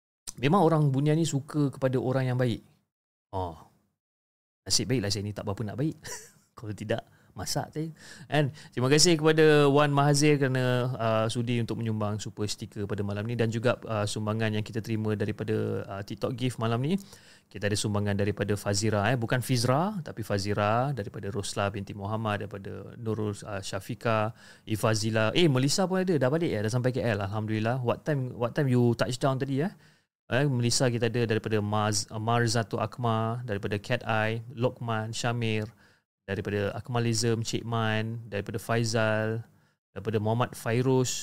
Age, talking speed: 30-49, 165 wpm